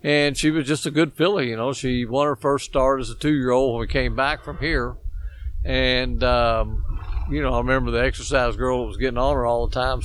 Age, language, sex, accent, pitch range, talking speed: 50-69, English, male, American, 120-140 Hz, 240 wpm